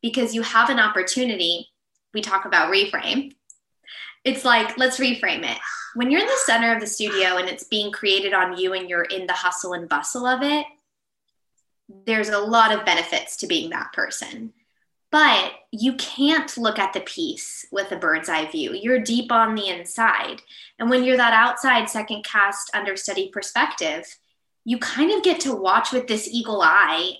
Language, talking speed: English, 180 wpm